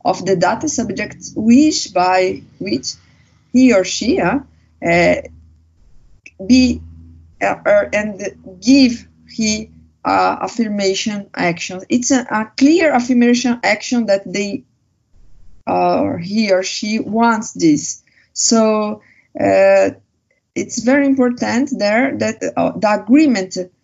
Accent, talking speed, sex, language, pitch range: Brazilian, 115 wpm, female, English, 180-245 Hz